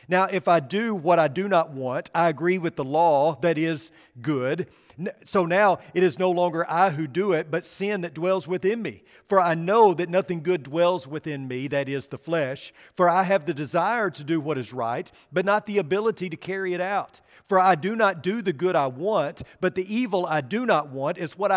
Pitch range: 145-185 Hz